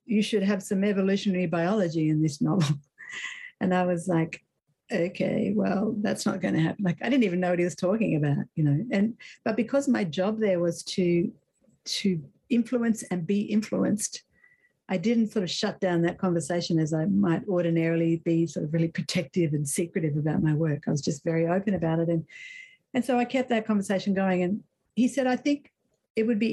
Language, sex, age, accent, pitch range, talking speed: English, female, 60-79, Australian, 170-215 Hz, 205 wpm